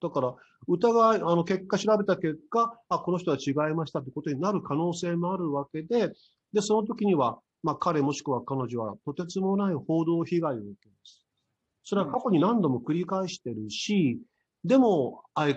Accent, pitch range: native, 135-200 Hz